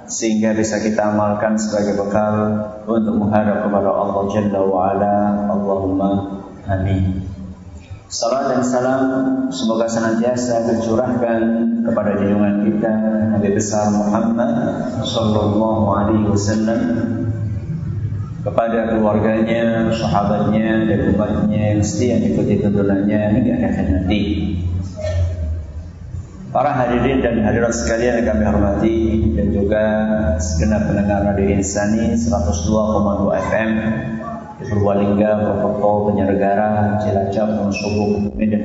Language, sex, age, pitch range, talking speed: Malay, male, 30-49, 100-110 Hz, 95 wpm